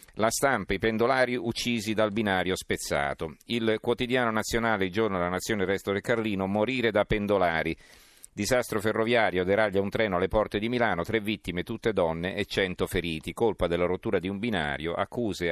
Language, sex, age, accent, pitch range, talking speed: Italian, male, 40-59, native, 90-115 Hz, 170 wpm